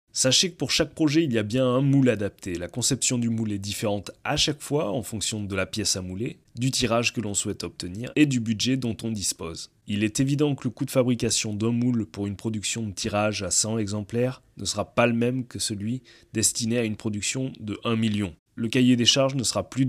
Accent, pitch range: French, 105-130 Hz